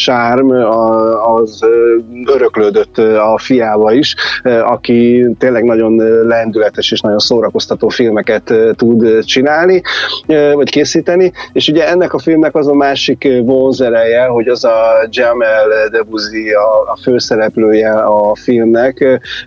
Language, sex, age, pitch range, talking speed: Hungarian, male, 30-49, 110-130 Hz, 115 wpm